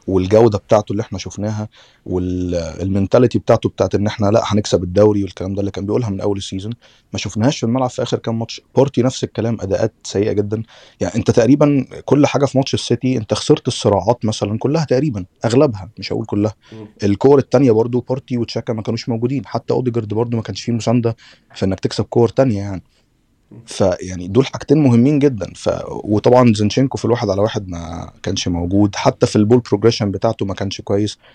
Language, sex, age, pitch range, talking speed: Arabic, male, 30-49, 100-125 Hz, 185 wpm